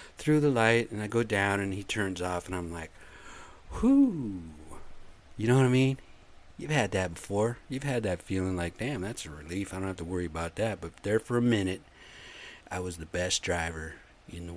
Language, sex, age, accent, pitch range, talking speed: English, male, 50-69, American, 90-120 Hz, 215 wpm